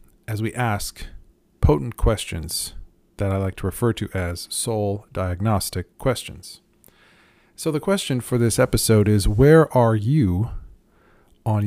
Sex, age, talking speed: male, 40-59, 135 wpm